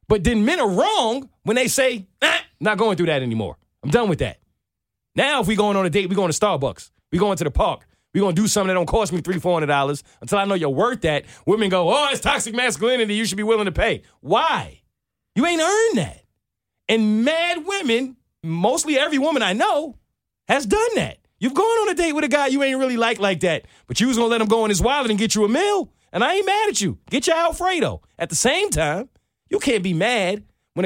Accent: American